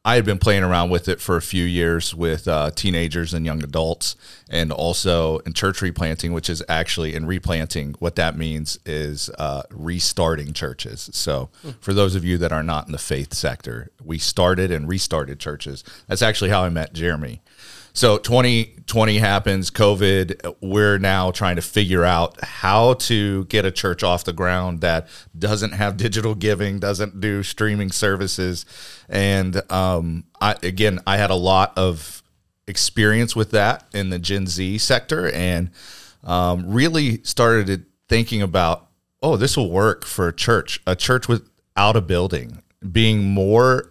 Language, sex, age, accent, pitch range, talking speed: English, male, 40-59, American, 85-105 Hz, 165 wpm